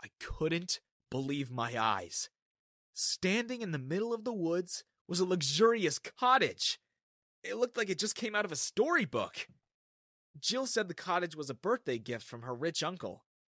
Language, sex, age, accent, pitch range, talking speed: English, male, 30-49, American, 125-205 Hz, 170 wpm